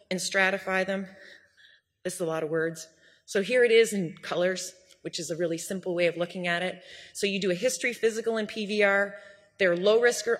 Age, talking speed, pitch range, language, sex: 30-49, 215 wpm, 170-215 Hz, English, female